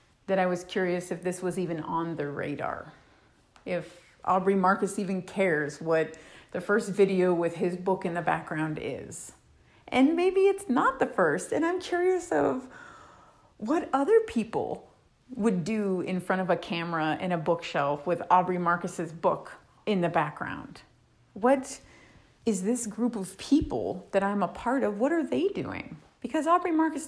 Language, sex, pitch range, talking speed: English, female, 180-255 Hz, 165 wpm